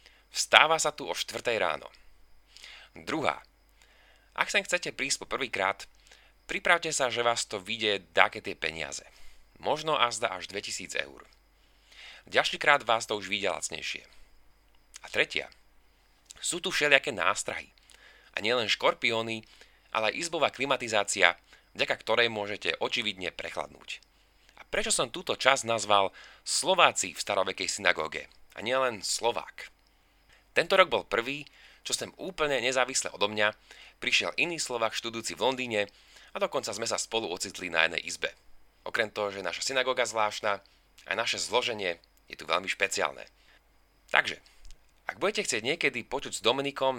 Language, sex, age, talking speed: Slovak, male, 30-49, 145 wpm